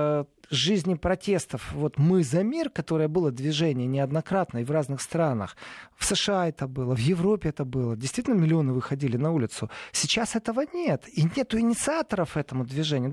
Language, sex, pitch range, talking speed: Russian, male, 140-195 Hz, 160 wpm